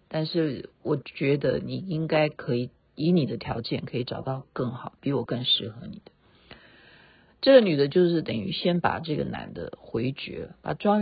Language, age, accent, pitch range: Chinese, 50-69, native, 135-195 Hz